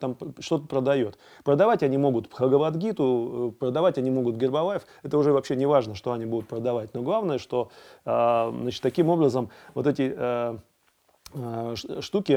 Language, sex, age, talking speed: Russian, male, 30-49, 140 wpm